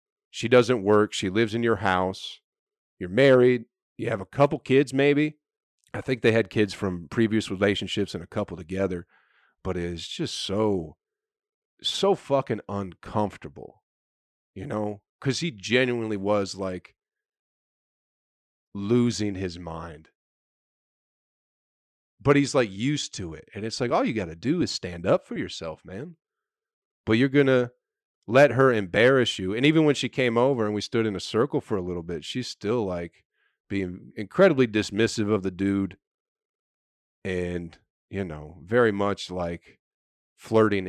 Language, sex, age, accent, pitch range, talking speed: English, male, 40-59, American, 95-140 Hz, 155 wpm